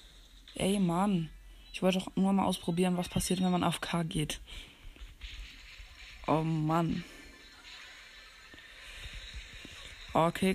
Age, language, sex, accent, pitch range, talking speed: 20-39, German, female, German, 155-185 Hz, 100 wpm